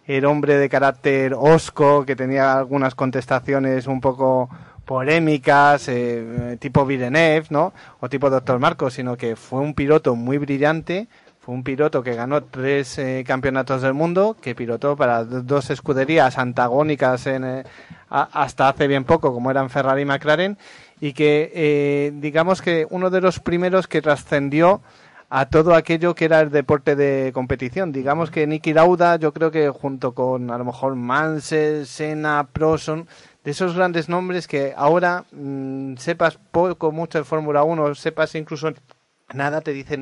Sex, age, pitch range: male, 30-49, 135-155 Hz